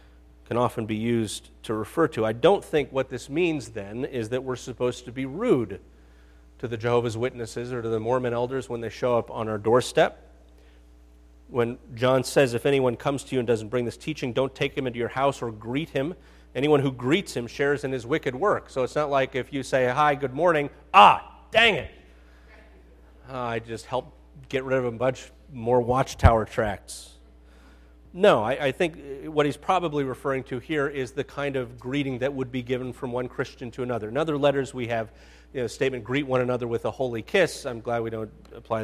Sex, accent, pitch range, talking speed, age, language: male, American, 115-135 Hz, 215 wpm, 40-59, English